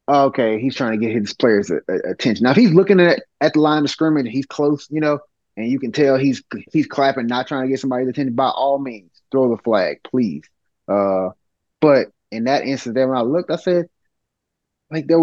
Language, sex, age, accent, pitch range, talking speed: English, male, 20-39, American, 105-140 Hz, 215 wpm